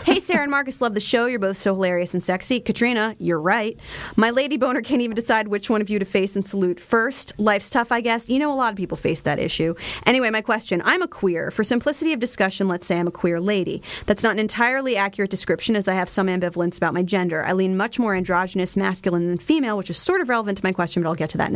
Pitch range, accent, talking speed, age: 180-235 Hz, American, 265 wpm, 30-49